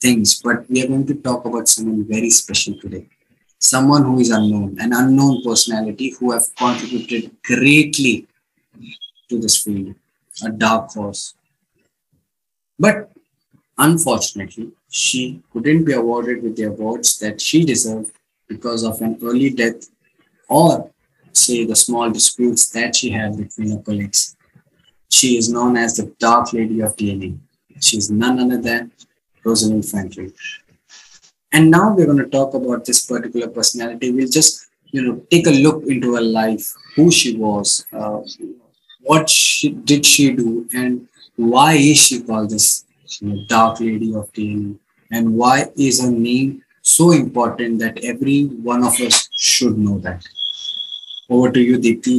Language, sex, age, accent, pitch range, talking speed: English, male, 20-39, Indian, 110-130 Hz, 150 wpm